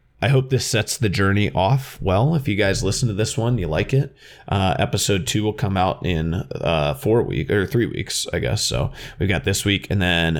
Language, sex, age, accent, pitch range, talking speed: English, male, 20-39, American, 95-125 Hz, 230 wpm